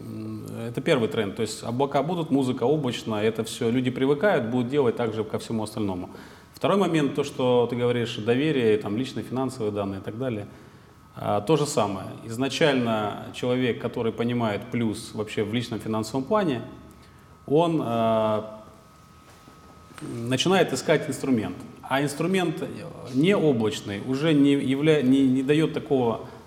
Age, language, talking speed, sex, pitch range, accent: 30-49, Russian, 135 wpm, male, 105-135 Hz, native